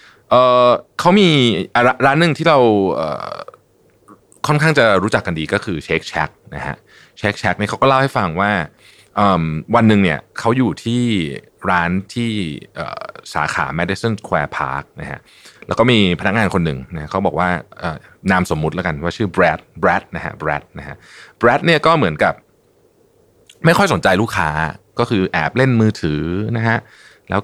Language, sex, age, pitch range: Thai, male, 20-39, 90-120 Hz